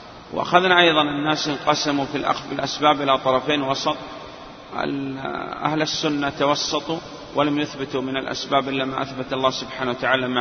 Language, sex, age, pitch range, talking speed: Arabic, male, 40-59, 135-155 Hz, 135 wpm